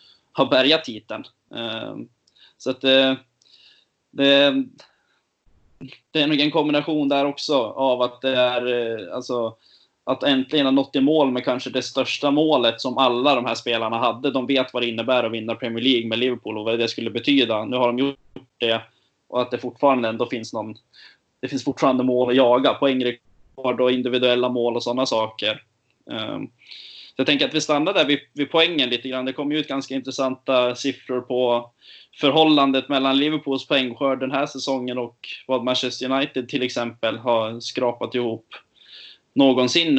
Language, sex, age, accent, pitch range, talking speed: Swedish, male, 20-39, native, 120-135 Hz, 170 wpm